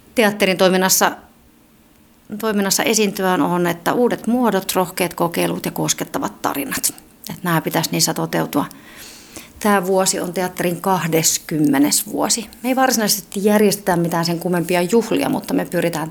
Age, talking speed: 30-49, 130 wpm